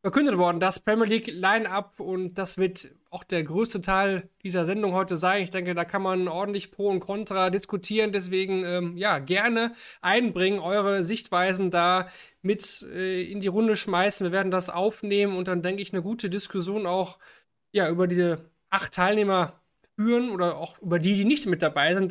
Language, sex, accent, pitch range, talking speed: German, male, German, 175-200 Hz, 180 wpm